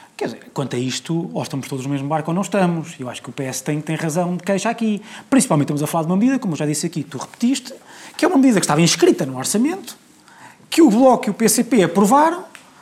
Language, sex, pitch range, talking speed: Portuguese, male, 150-235 Hz, 255 wpm